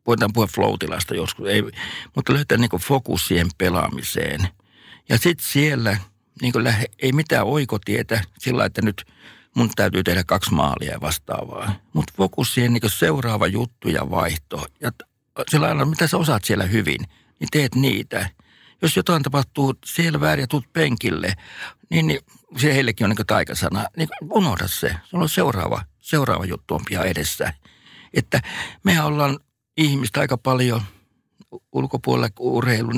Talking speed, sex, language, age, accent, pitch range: 140 wpm, male, Finnish, 60-79, native, 100-140 Hz